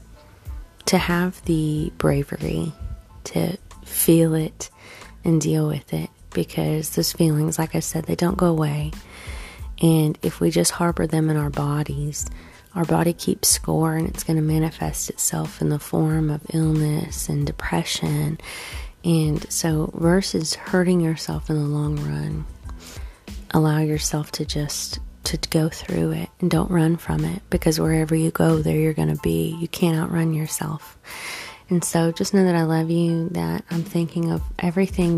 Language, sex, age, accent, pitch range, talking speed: English, female, 30-49, American, 150-165 Hz, 160 wpm